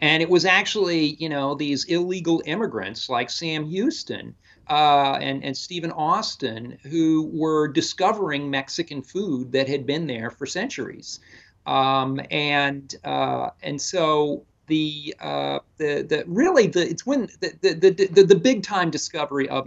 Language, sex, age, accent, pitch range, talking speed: English, male, 40-59, American, 125-170 Hz, 150 wpm